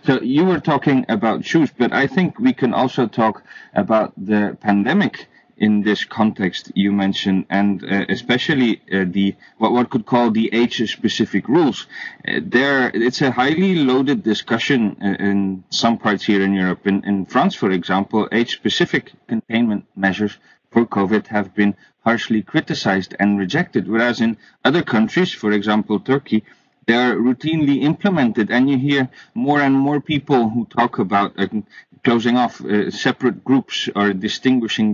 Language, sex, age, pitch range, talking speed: English, male, 30-49, 105-135 Hz, 160 wpm